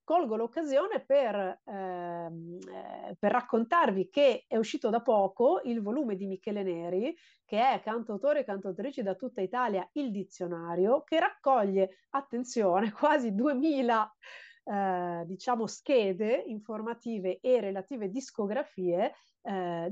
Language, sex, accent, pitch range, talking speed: Italian, female, native, 195-255 Hz, 115 wpm